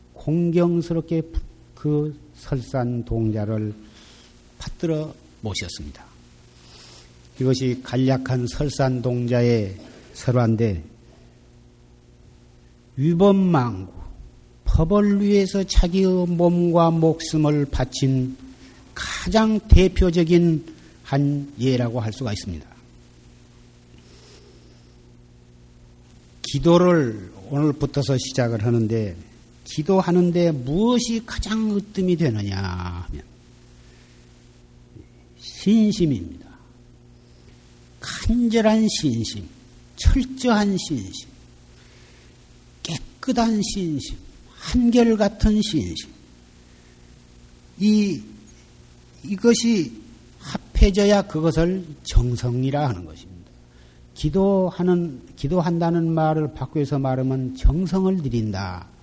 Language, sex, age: Korean, male, 50-69